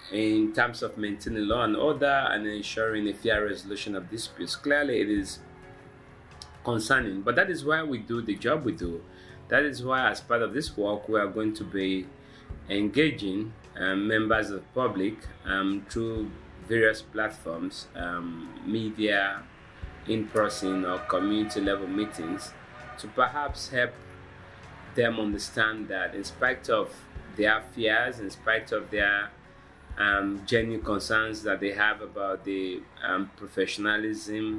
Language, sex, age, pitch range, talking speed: English, male, 30-49, 100-110 Hz, 140 wpm